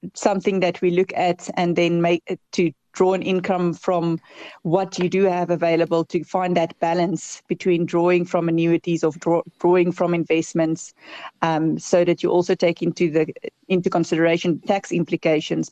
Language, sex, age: English, female, 30-49